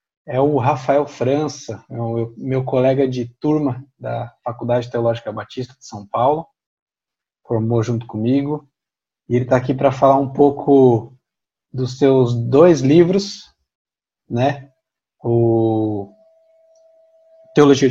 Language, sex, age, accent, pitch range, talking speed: Portuguese, male, 20-39, Brazilian, 120-145 Hz, 115 wpm